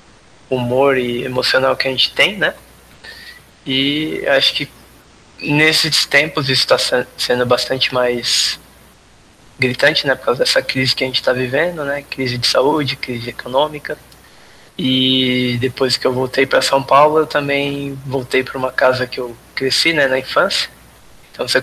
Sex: male